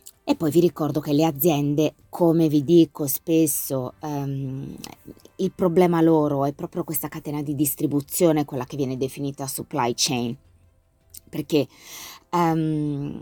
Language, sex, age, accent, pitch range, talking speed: Italian, female, 20-39, native, 140-175 Hz, 130 wpm